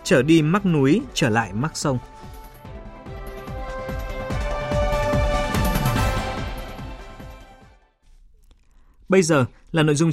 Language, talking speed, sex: Vietnamese, 75 wpm, male